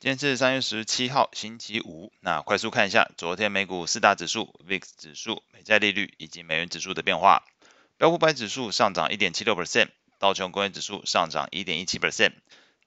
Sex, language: male, Chinese